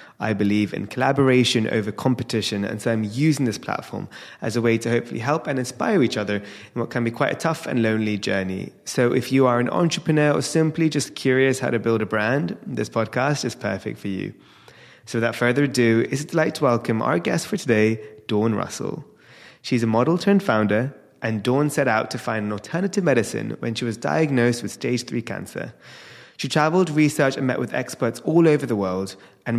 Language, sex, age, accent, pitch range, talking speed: English, male, 20-39, British, 110-145 Hz, 205 wpm